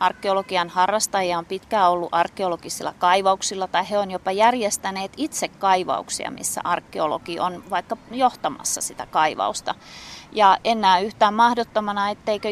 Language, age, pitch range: Finnish, 30-49, 175-215 Hz